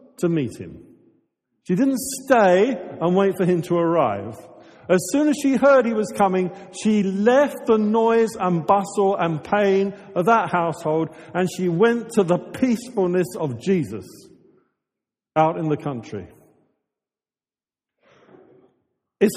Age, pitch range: 50-69, 135-195 Hz